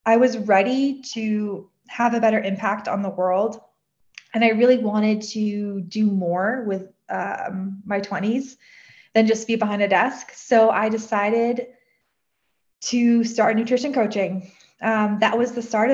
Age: 20-39